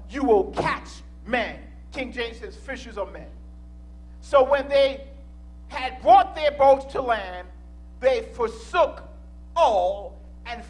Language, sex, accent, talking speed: English, male, American, 130 wpm